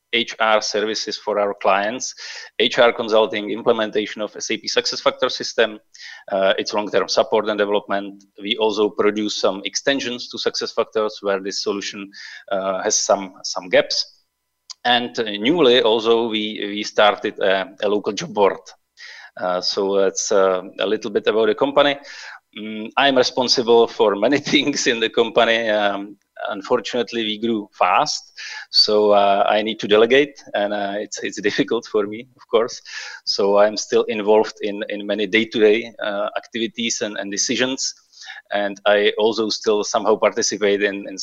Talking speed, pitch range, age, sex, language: 150 wpm, 100-115 Hz, 30-49, male, English